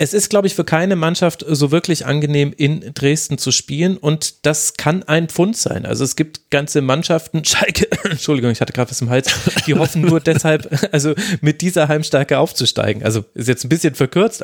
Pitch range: 125-155 Hz